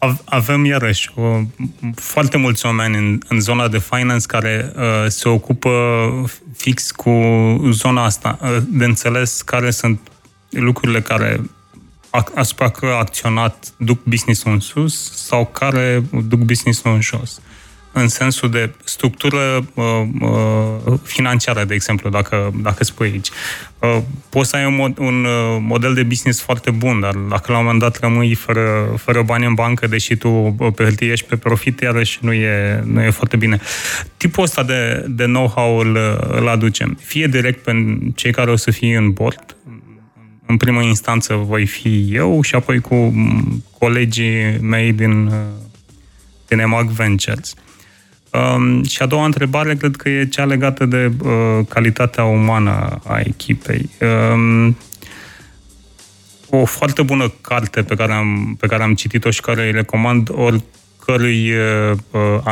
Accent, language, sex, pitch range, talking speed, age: native, Romanian, male, 110-125 Hz, 150 wpm, 20-39